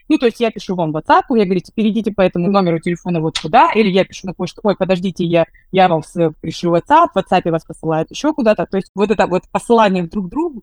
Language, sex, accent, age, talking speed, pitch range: Russian, female, native, 20-39, 255 wpm, 165-220 Hz